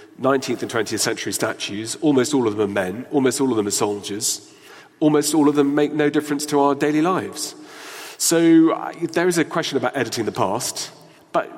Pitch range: 120-160 Hz